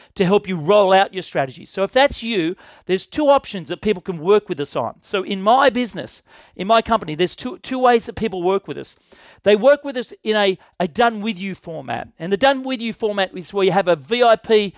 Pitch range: 185-225 Hz